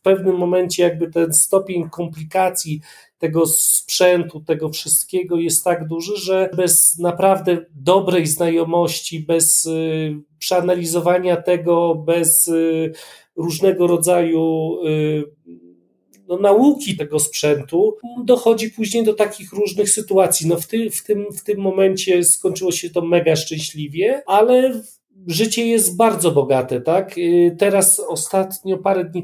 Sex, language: male, Polish